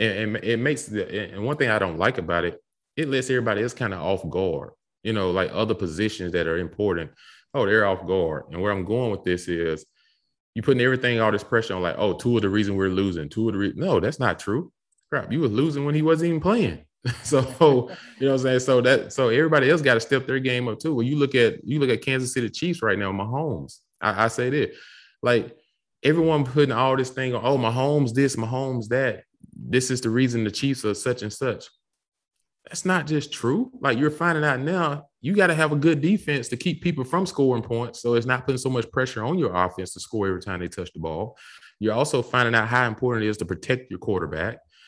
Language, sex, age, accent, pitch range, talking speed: English, male, 20-39, American, 95-135 Hz, 240 wpm